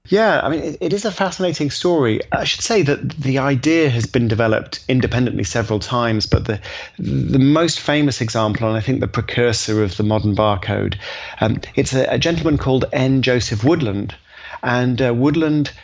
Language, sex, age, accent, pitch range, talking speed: English, male, 30-49, British, 110-135 Hz, 180 wpm